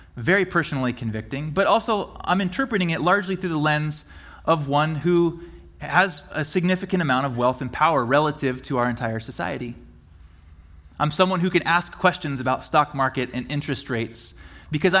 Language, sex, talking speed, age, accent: English, male, 165 wpm, 20-39, American